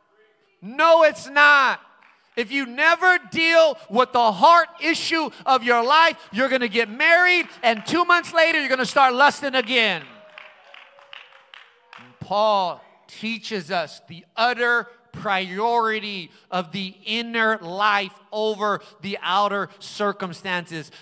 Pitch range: 185-245 Hz